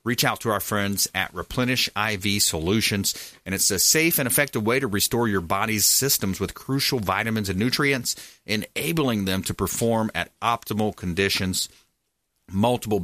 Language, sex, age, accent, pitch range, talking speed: English, male, 30-49, American, 95-120 Hz, 155 wpm